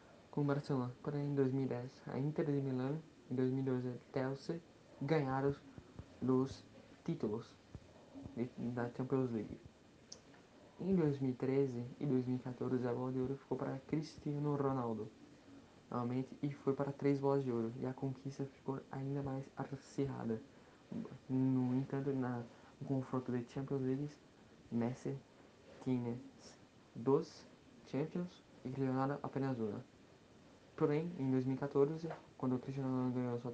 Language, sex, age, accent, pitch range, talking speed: Portuguese, male, 20-39, Brazilian, 125-140 Hz, 125 wpm